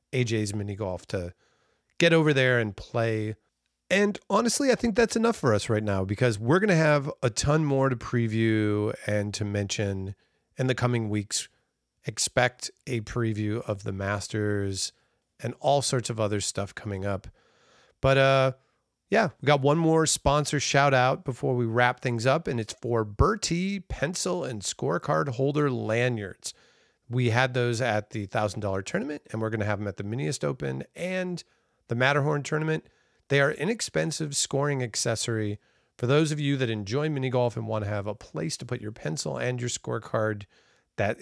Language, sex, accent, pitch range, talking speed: English, male, American, 105-145 Hz, 175 wpm